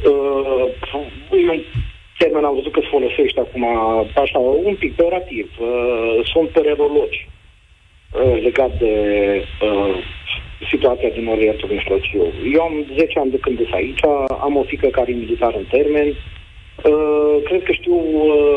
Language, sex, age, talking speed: Romanian, male, 40-59, 150 wpm